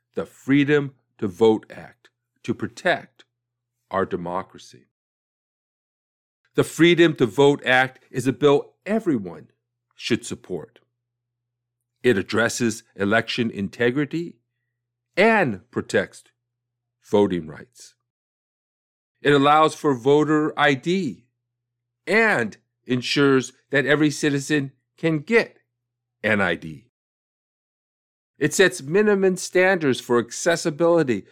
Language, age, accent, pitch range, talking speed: English, 50-69, American, 120-155 Hz, 90 wpm